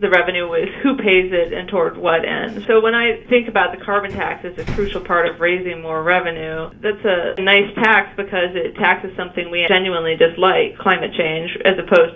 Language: English